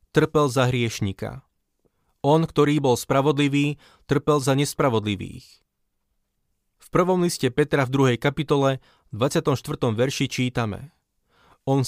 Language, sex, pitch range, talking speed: Slovak, male, 125-155 Hz, 105 wpm